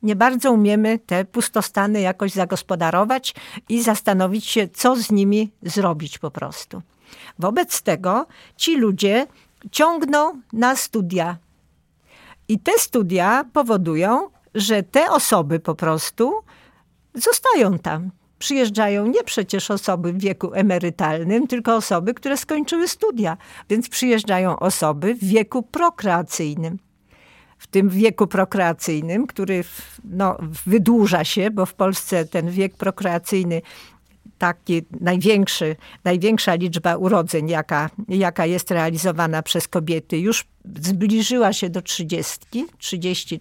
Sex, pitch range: female, 175-225 Hz